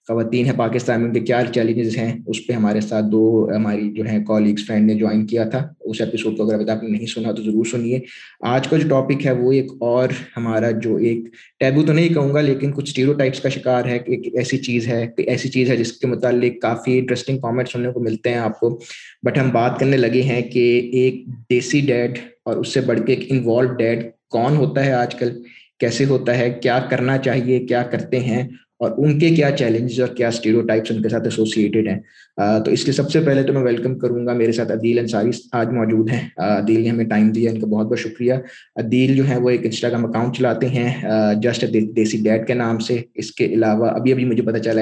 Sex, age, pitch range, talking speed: male, 20-39, 115-125 Hz, 215 wpm